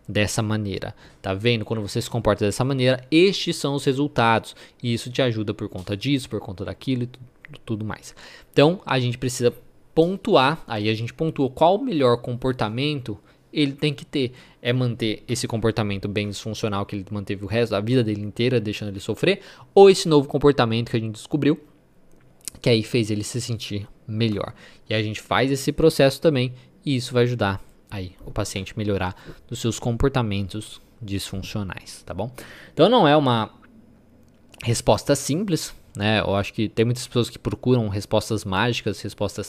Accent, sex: Brazilian, male